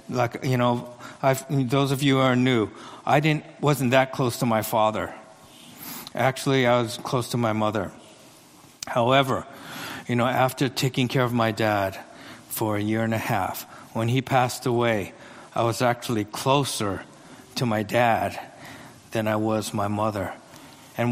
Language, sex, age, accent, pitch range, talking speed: English, male, 50-69, American, 110-135 Hz, 160 wpm